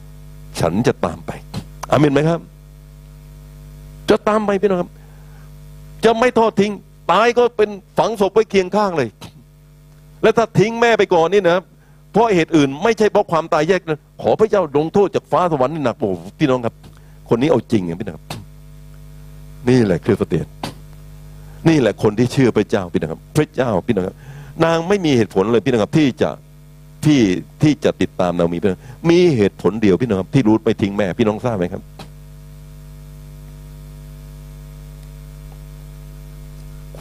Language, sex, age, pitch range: Thai, male, 60-79, 145-150 Hz